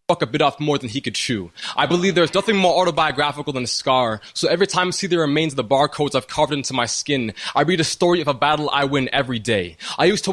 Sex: male